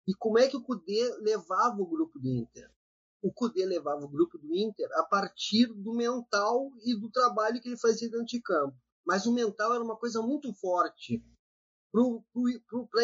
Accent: Brazilian